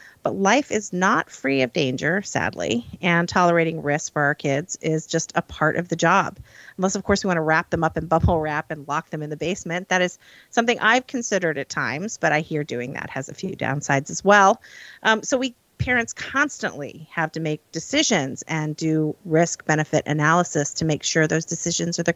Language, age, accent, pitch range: English, 40-59, American, 150-195 Hz